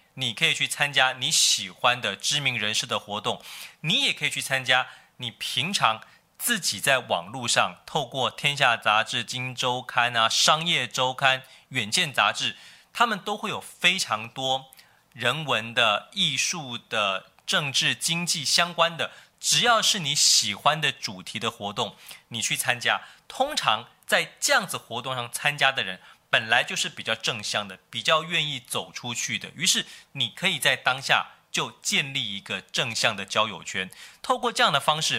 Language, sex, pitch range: Chinese, male, 120-160 Hz